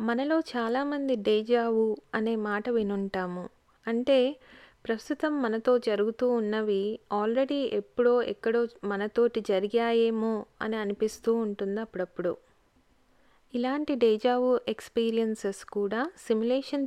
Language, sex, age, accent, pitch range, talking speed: Telugu, female, 20-39, native, 205-245 Hz, 90 wpm